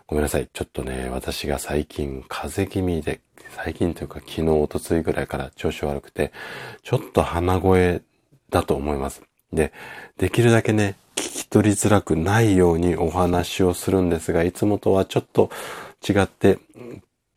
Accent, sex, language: native, male, Japanese